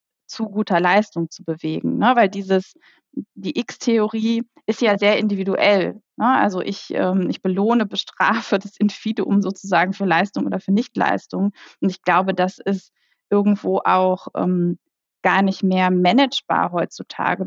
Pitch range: 185-215 Hz